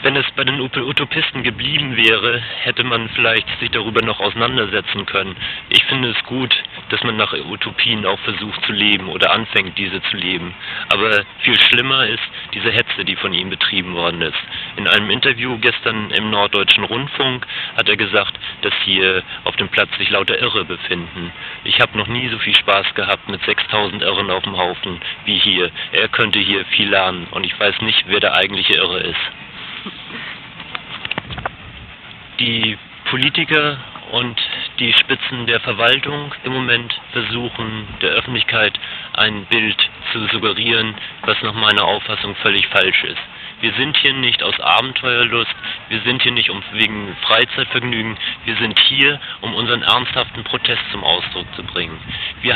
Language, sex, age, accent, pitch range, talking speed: German, male, 40-59, German, 100-125 Hz, 160 wpm